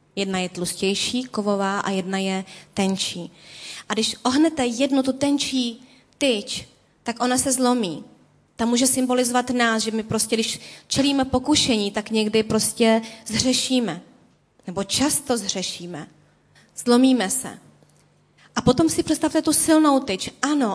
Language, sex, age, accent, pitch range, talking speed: Czech, female, 20-39, native, 200-255 Hz, 135 wpm